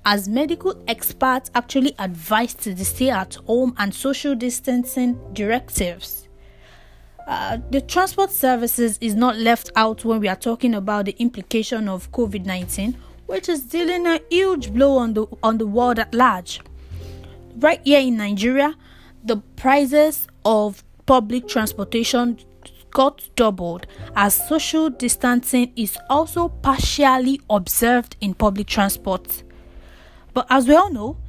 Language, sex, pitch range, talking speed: English, female, 205-265 Hz, 130 wpm